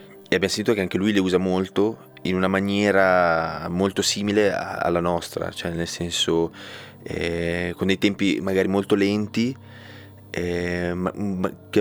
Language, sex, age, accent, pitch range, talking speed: Italian, male, 20-39, native, 85-100 Hz, 140 wpm